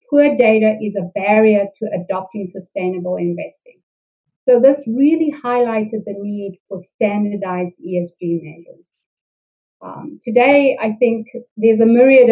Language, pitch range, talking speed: English, 195-245 Hz, 125 wpm